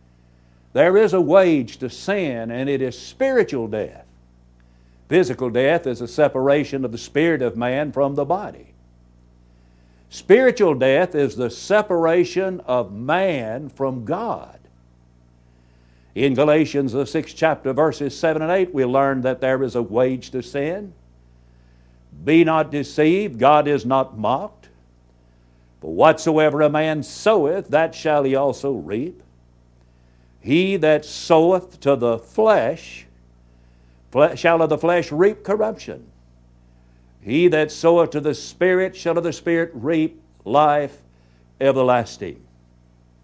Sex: male